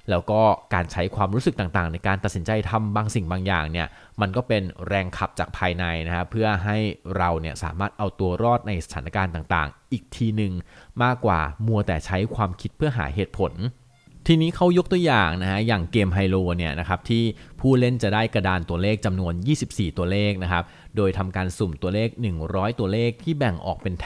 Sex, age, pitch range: male, 20-39, 90-110 Hz